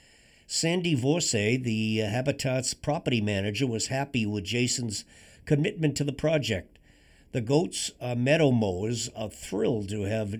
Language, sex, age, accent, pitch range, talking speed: English, male, 50-69, American, 110-140 Hz, 135 wpm